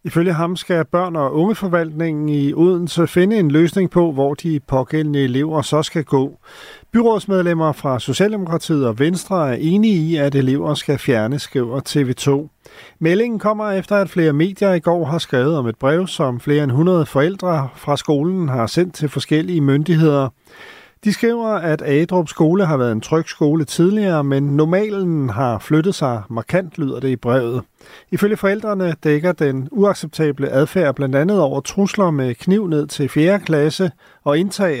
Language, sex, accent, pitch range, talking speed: Danish, male, native, 140-180 Hz, 170 wpm